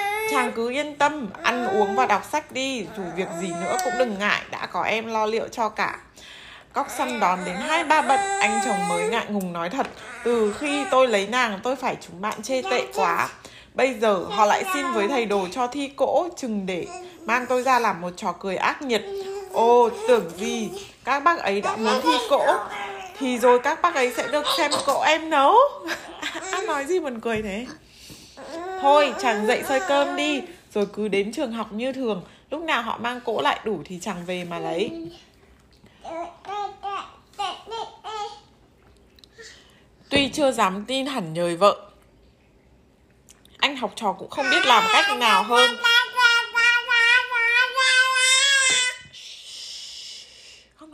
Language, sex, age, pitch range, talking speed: Vietnamese, female, 20-39, 215-325 Hz, 165 wpm